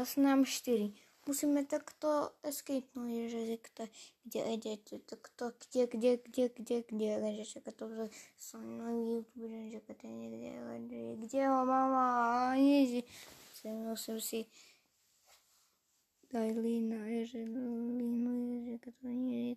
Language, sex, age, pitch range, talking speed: Slovak, female, 20-39, 215-245 Hz, 125 wpm